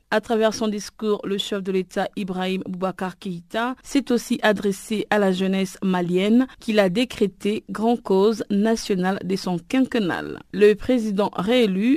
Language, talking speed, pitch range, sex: French, 150 wpm, 195-235 Hz, female